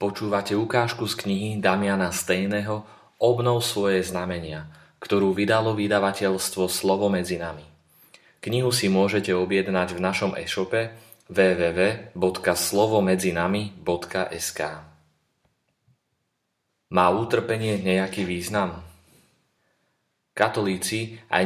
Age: 30-49